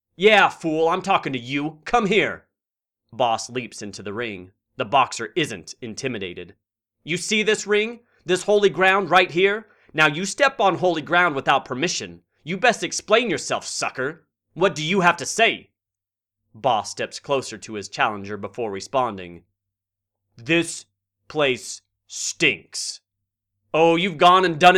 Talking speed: 150 wpm